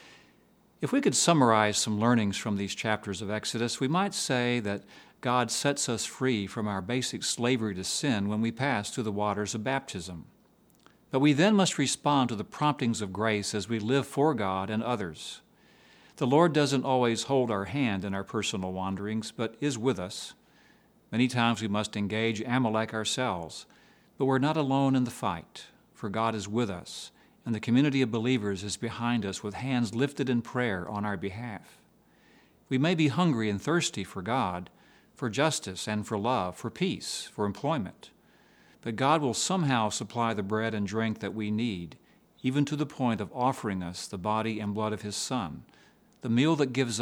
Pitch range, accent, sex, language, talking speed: 105-135 Hz, American, male, English, 190 wpm